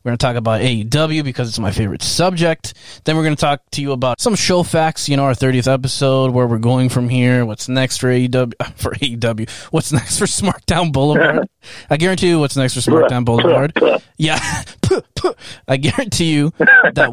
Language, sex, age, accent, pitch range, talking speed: English, male, 20-39, American, 115-145 Hz, 195 wpm